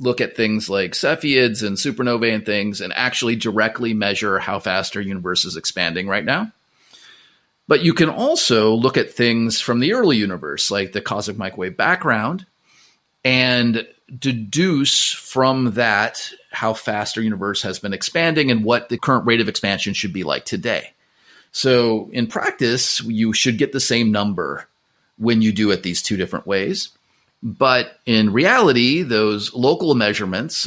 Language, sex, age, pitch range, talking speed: English, male, 30-49, 105-135 Hz, 160 wpm